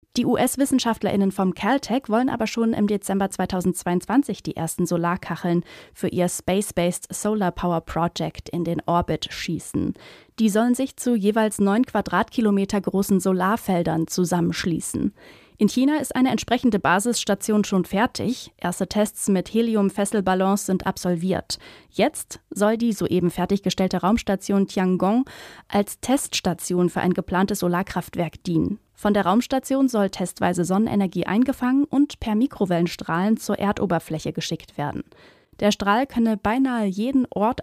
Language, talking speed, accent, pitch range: German, 130 wpm, German, 180-225 Hz